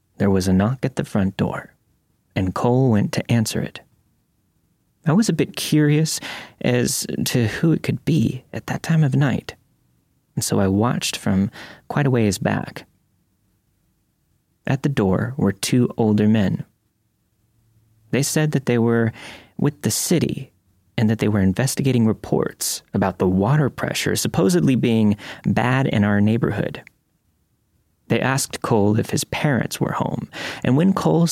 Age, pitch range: 30-49, 100-135 Hz